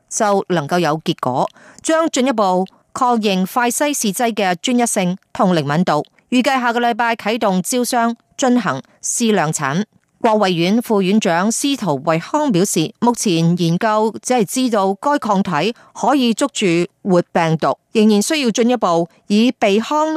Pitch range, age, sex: 185-250 Hz, 30-49, female